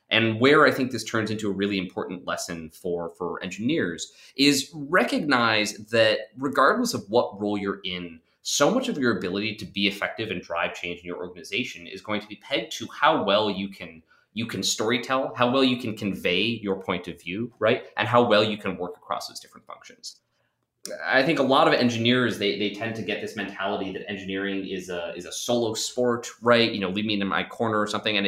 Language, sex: English, male